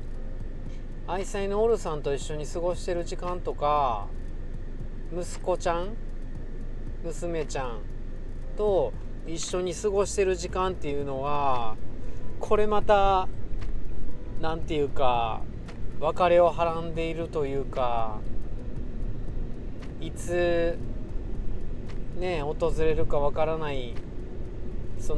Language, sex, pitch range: Japanese, male, 120-175 Hz